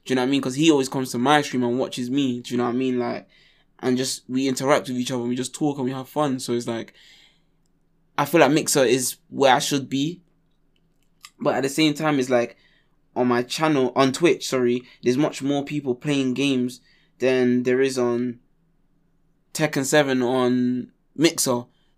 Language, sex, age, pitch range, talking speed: English, male, 20-39, 125-145 Hz, 215 wpm